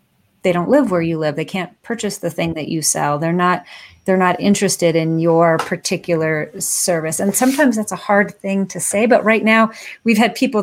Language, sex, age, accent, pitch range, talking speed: English, female, 30-49, American, 185-230 Hz, 210 wpm